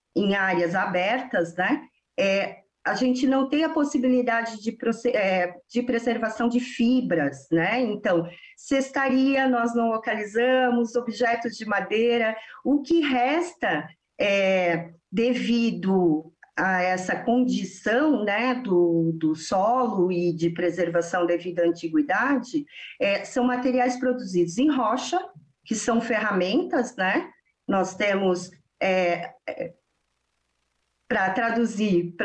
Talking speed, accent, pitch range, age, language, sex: 105 wpm, Brazilian, 190-255 Hz, 40-59, English, female